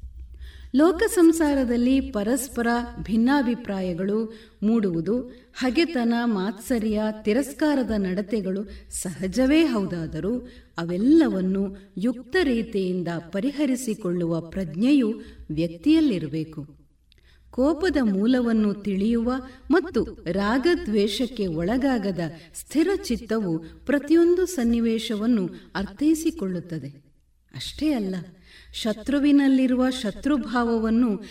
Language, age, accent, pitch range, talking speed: Kannada, 50-69, native, 185-270 Hz, 60 wpm